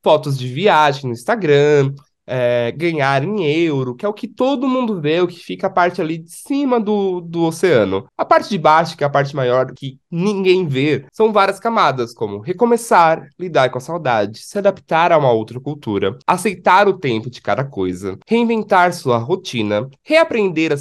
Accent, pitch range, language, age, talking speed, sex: Brazilian, 135-195 Hz, Portuguese, 20-39, 185 wpm, male